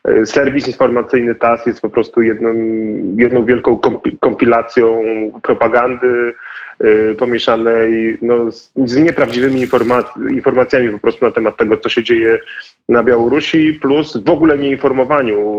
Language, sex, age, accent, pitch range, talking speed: Polish, male, 30-49, native, 110-140 Hz, 115 wpm